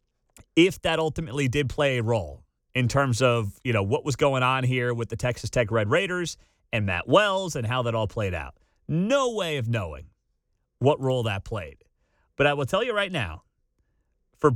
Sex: male